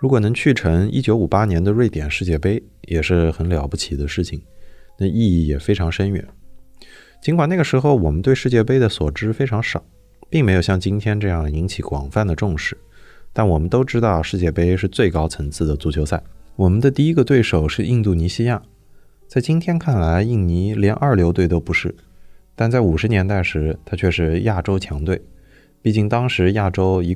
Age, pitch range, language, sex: 20-39, 85-115 Hz, Chinese, male